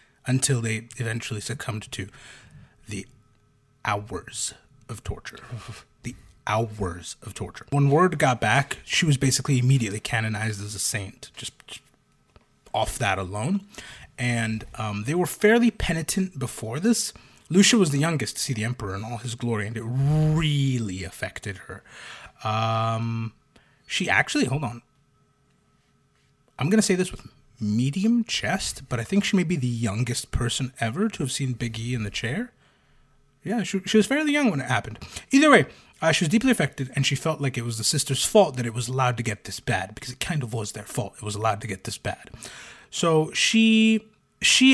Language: English